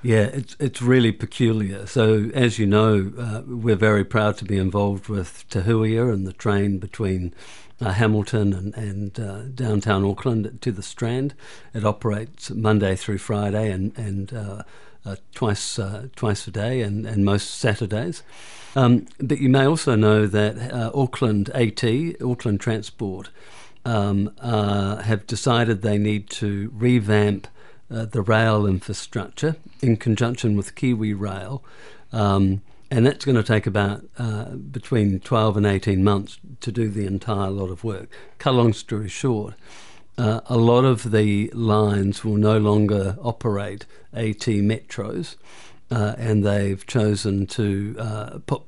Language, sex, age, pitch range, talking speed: English, male, 50-69, 100-120 Hz, 150 wpm